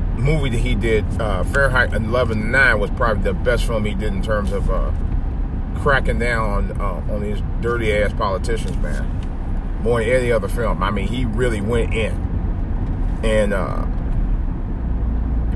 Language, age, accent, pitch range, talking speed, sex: English, 30-49, American, 70-115 Hz, 160 wpm, male